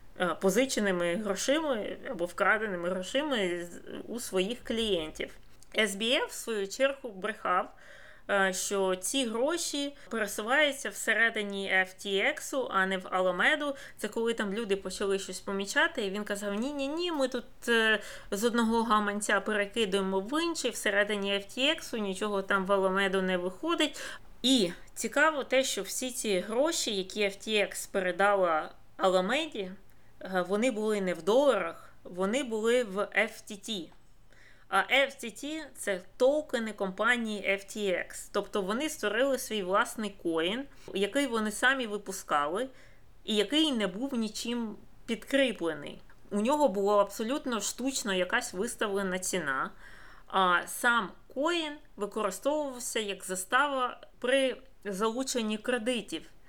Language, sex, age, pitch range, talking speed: Ukrainian, female, 20-39, 195-255 Hz, 115 wpm